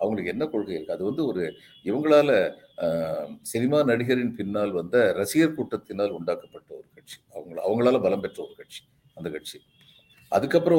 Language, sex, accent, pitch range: Tamil, male, native, 130-165 Hz